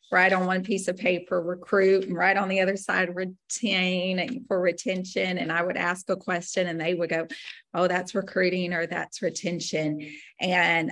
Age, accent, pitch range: 40-59, American, 180-235 Hz